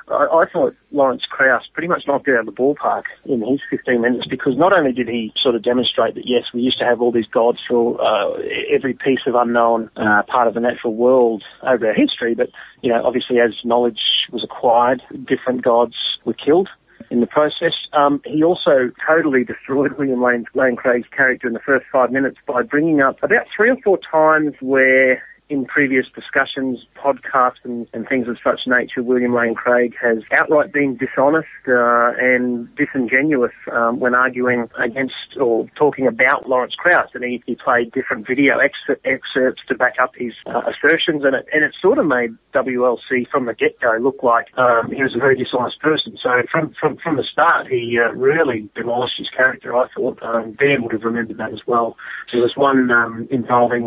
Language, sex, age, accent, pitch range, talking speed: English, male, 30-49, Australian, 120-135 Hz, 195 wpm